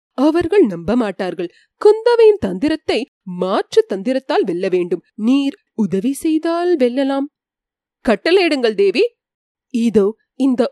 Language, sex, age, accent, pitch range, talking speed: Tamil, female, 30-49, native, 230-355 Hz, 85 wpm